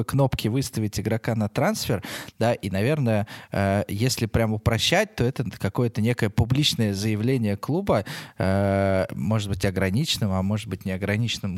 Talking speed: 130 wpm